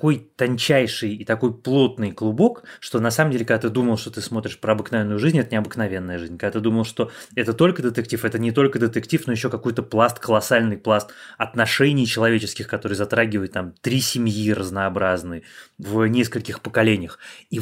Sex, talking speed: male, 175 wpm